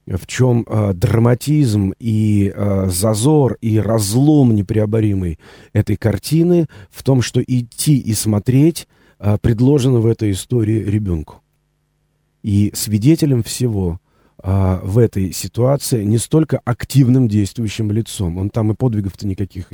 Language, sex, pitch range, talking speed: Russian, male, 95-120 Hz, 110 wpm